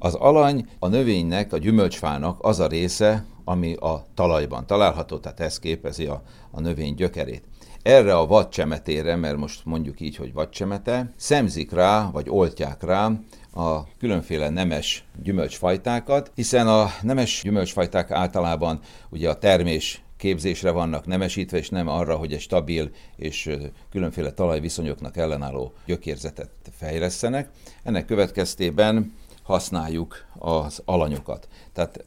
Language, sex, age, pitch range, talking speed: Hungarian, male, 60-79, 75-100 Hz, 125 wpm